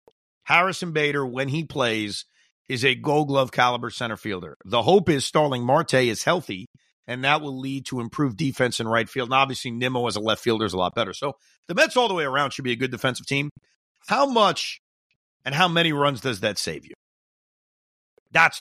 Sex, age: male, 40-59